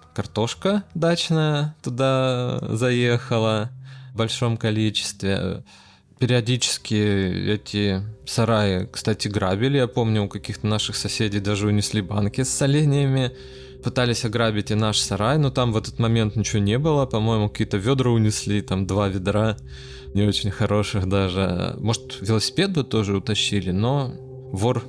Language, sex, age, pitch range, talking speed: Russian, male, 20-39, 100-130 Hz, 130 wpm